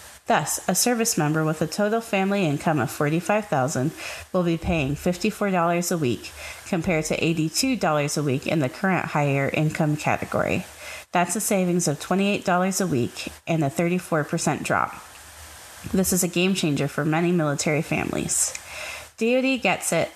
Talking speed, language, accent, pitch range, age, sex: 150 wpm, English, American, 155-195 Hz, 30-49, female